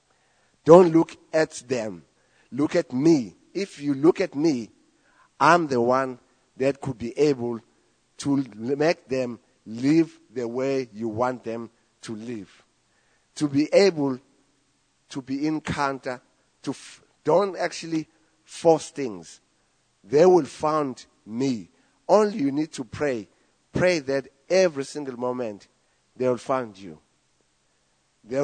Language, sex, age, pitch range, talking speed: English, male, 50-69, 120-155 Hz, 125 wpm